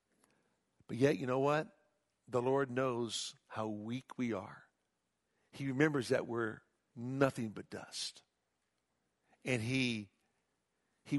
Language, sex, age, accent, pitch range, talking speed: English, male, 60-79, American, 95-140 Hz, 120 wpm